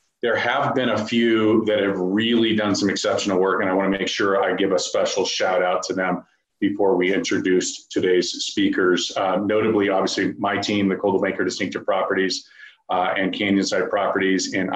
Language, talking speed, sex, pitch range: English, 185 wpm, male, 95-110 Hz